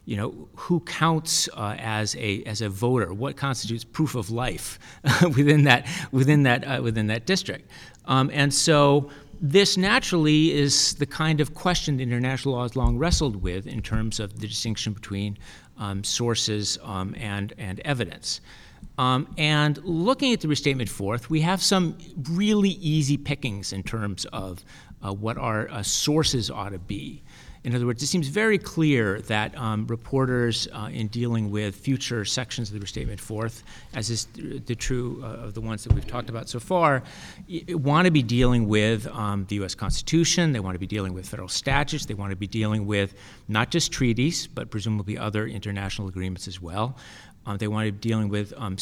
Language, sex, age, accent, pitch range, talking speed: English, male, 50-69, American, 105-145 Hz, 185 wpm